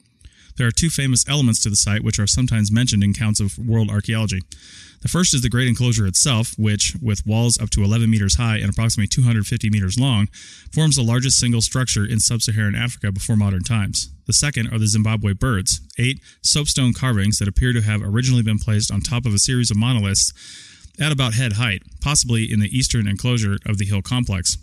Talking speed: 205 wpm